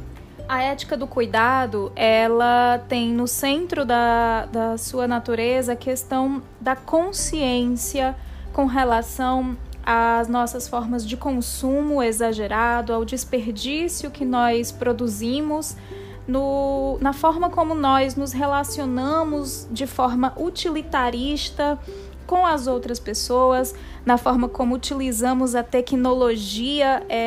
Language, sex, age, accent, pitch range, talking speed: Portuguese, female, 20-39, Brazilian, 235-280 Hz, 105 wpm